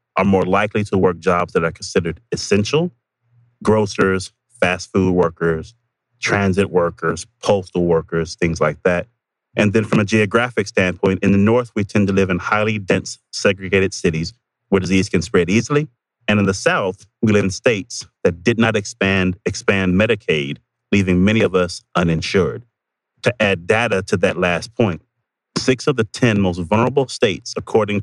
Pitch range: 95-120 Hz